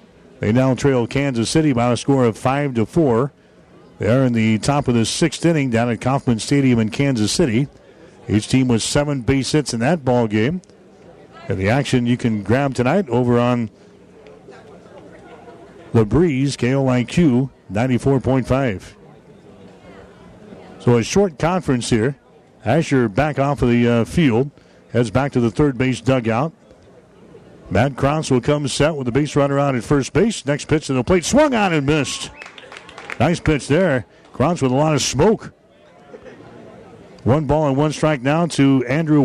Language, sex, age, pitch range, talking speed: English, male, 60-79, 120-145 Hz, 165 wpm